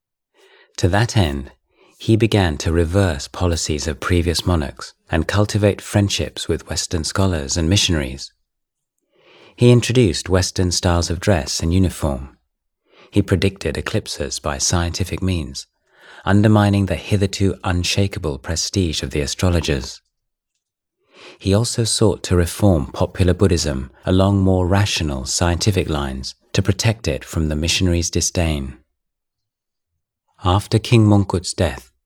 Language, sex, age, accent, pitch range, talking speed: English, male, 30-49, British, 80-100 Hz, 120 wpm